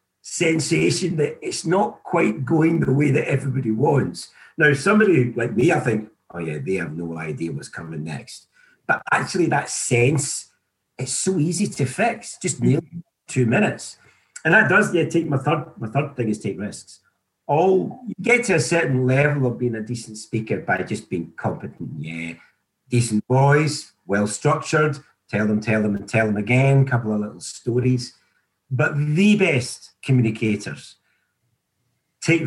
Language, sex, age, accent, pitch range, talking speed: English, male, 50-69, British, 120-160 Hz, 165 wpm